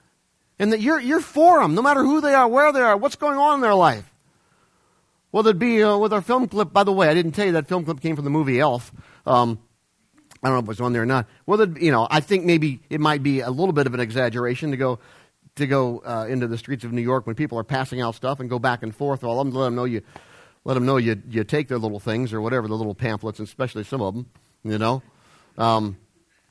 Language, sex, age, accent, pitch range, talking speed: English, male, 40-59, American, 105-170 Hz, 265 wpm